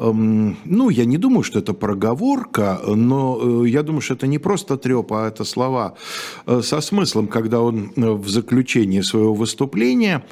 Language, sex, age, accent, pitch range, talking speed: Russian, male, 50-69, native, 110-145 Hz, 150 wpm